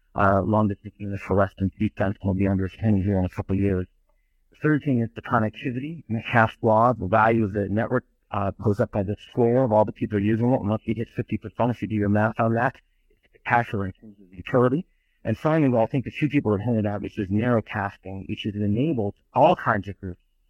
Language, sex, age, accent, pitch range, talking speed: English, male, 50-69, American, 100-120 Hz, 265 wpm